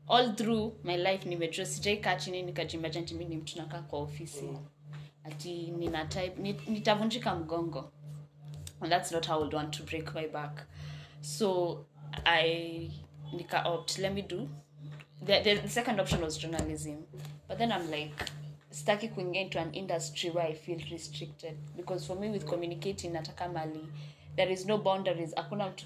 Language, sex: English, female